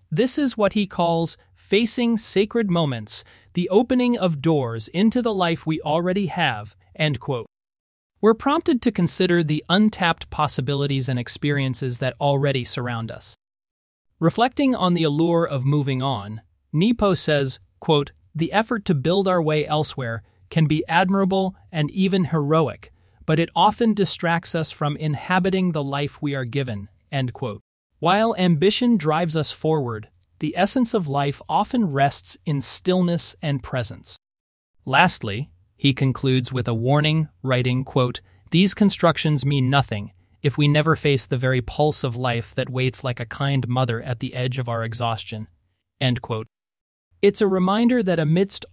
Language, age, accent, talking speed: English, 30-49, American, 150 wpm